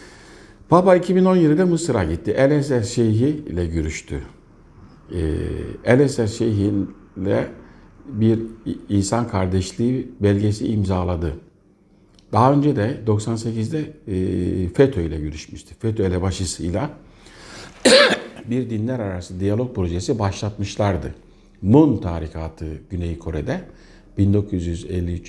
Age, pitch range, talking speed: 60-79, 90-115 Hz, 90 wpm